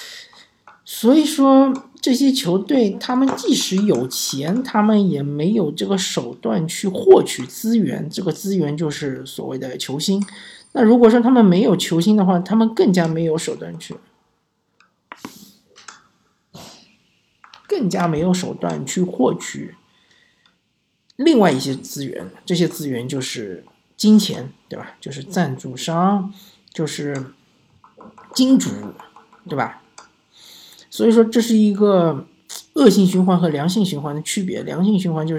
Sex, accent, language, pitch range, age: male, native, Chinese, 165-230 Hz, 50-69